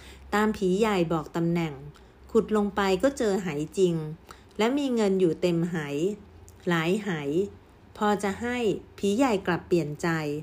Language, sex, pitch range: Thai, female, 165-210 Hz